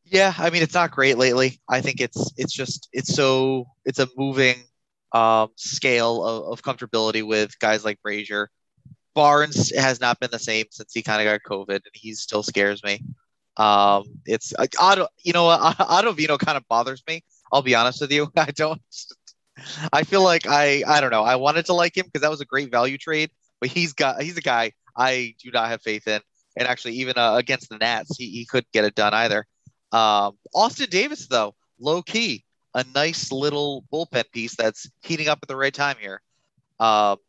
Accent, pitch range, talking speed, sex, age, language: American, 110-150 Hz, 205 wpm, male, 20-39, English